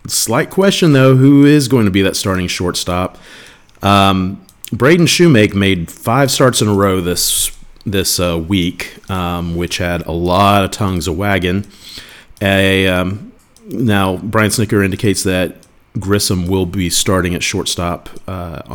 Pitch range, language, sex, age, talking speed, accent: 90-105 Hz, English, male, 40-59, 150 wpm, American